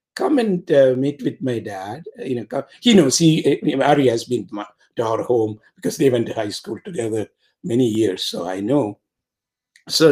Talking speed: 195 wpm